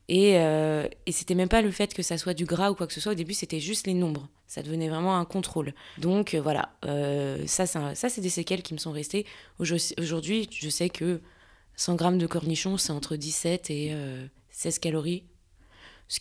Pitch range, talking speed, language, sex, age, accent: 160-185 Hz, 225 wpm, French, female, 20-39, French